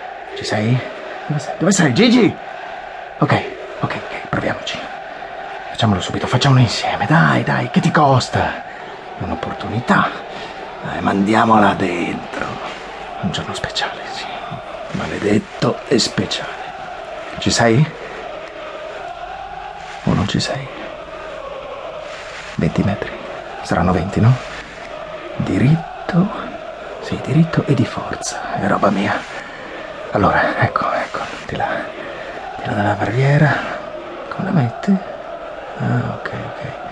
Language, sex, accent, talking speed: Italian, male, native, 105 wpm